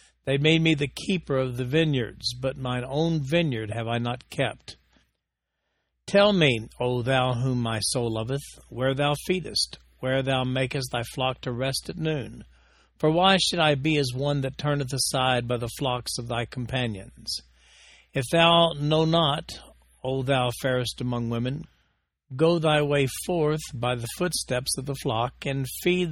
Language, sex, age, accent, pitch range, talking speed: English, male, 60-79, American, 120-150 Hz, 170 wpm